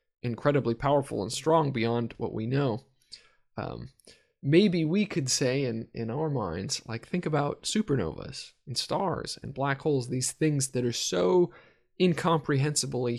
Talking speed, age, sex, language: 145 wpm, 20-39, male, English